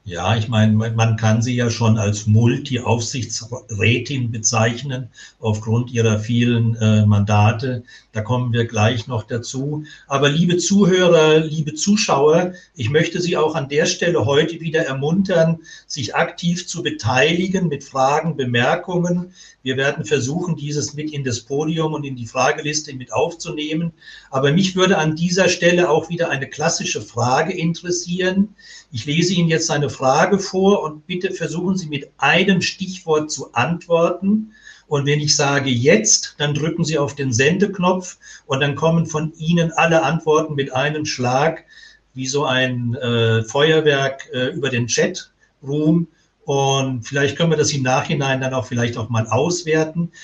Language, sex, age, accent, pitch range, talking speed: German, male, 60-79, German, 125-170 Hz, 155 wpm